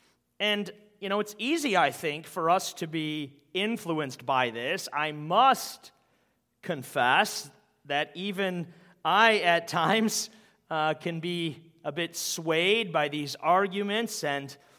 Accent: American